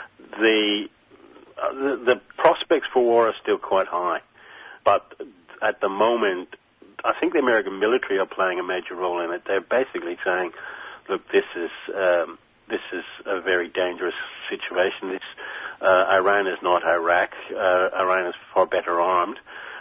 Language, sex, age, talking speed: English, male, 50-69, 160 wpm